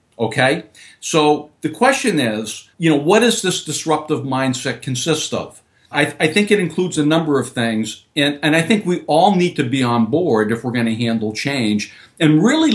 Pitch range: 115-160 Hz